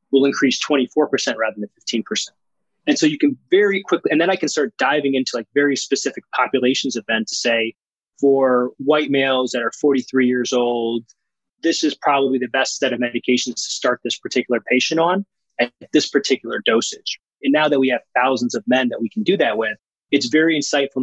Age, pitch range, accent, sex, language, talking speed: 20-39, 125-150 Hz, American, male, English, 200 wpm